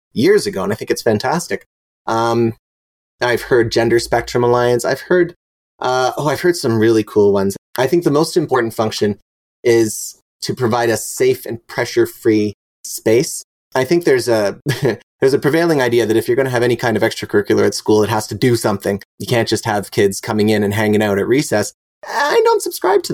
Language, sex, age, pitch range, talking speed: English, male, 30-49, 110-155 Hz, 200 wpm